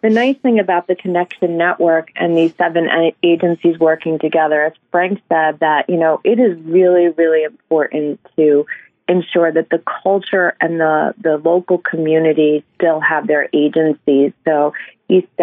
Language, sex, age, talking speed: English, female, 30-49, 155 wpm